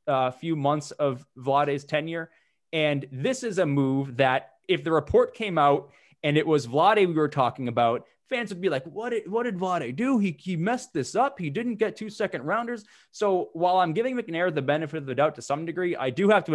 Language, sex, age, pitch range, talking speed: English, male, 20-39, 140-175 Hz, 225 wpm